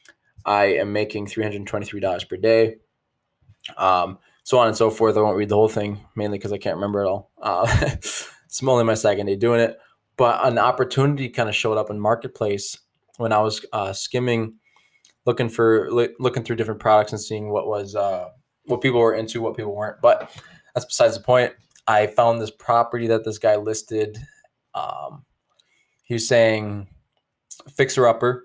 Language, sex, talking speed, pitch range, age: English, male, 175 wpm, 105-120 Hz, 20-39